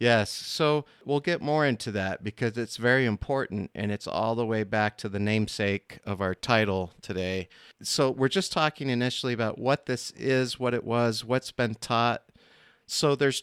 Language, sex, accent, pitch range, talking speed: English, male, American, 105-135 Hz, 185 wpm